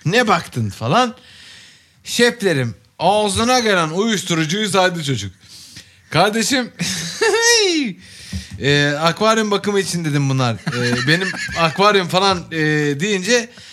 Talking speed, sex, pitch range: 95 wpm, male, 140-195 Hz